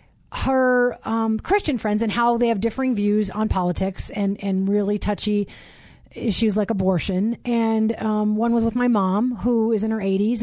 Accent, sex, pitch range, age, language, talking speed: American, female, 200-245 Hz, 30-49, English, 180 wpm